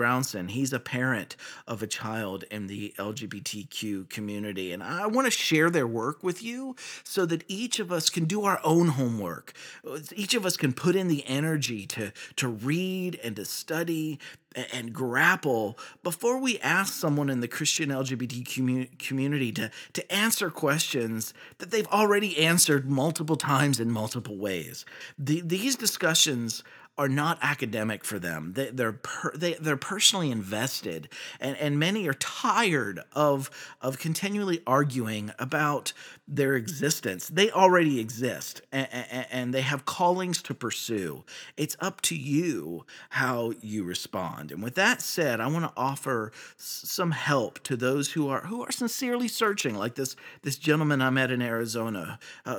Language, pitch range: English, 120-170 Hz